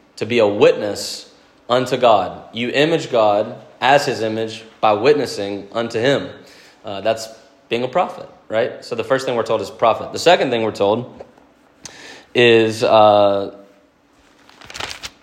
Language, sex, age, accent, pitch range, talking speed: English, male, 20-39, American, 100-120 Hz, 145 wpm